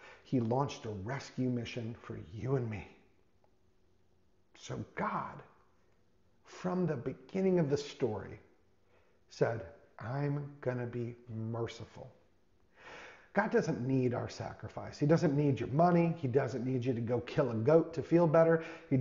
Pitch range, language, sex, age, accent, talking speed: 125-160 Hz, English, male, 40-59, American, 140 wpm